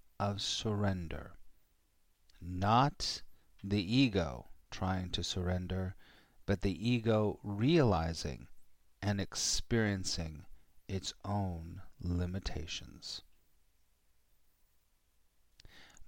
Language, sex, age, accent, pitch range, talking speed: English, male, 40-59, American, 80-105 Hz, 65 wpm